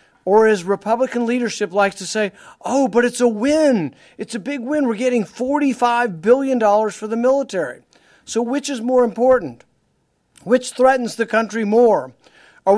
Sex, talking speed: male, 160 wpm